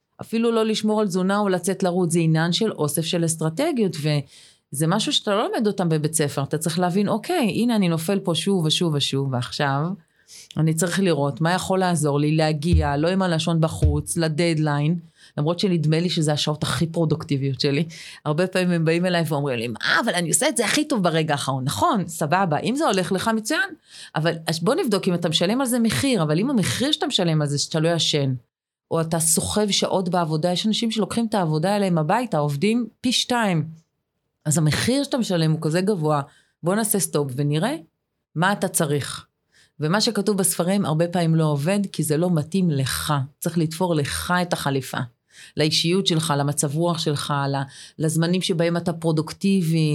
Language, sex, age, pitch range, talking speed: Hebrew, female, 30-49, 150-195 Hz, 155 wpm